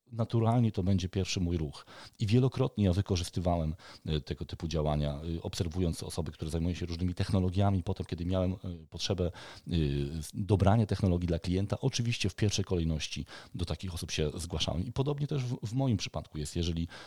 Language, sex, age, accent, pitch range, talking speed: Polish, male, 40-59, native, 85-110 Hz, 160 wpm